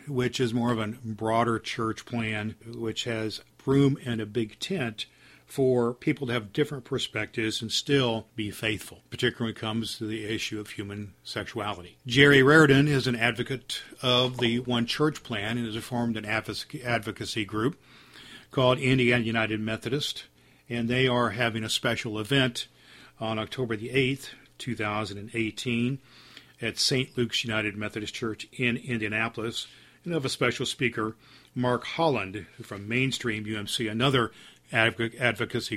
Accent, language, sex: American, English, male